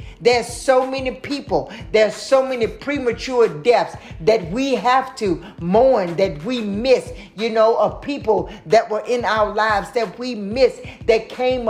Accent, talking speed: American, 160 wpm